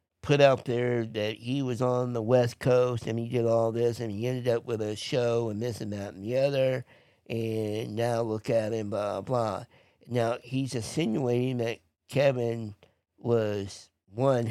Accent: American